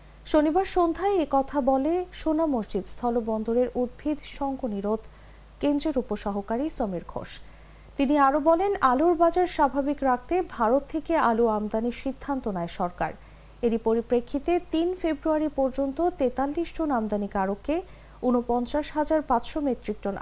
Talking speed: 115 wpm